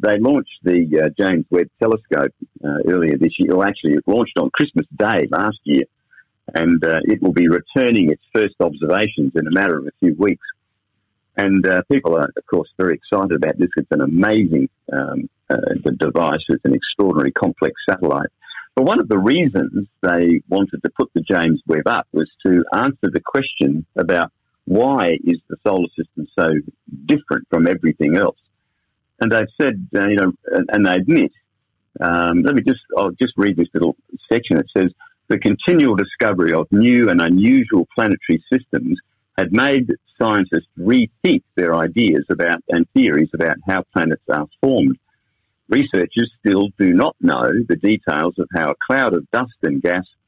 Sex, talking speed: male, 175 wpm